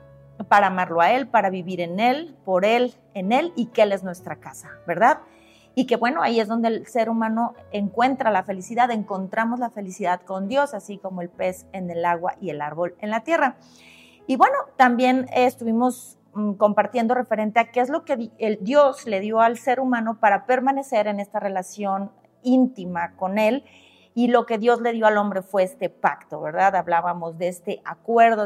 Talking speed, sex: 190 wpm, female